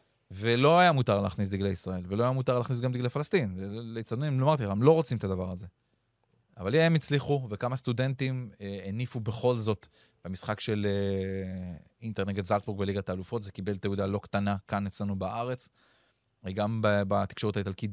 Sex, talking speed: male, 160 wpm